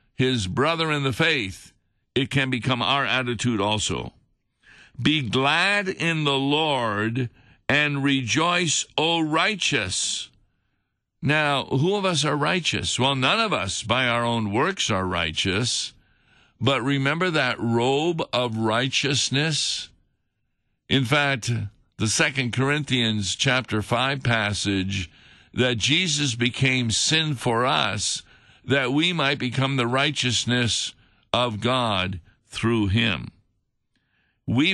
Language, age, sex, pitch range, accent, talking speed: English, 60-79, male, 110-145 Hz, American, 115 wpm